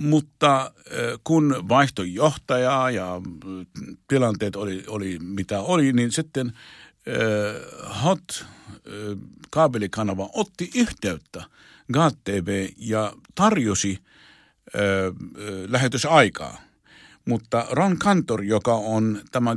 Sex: male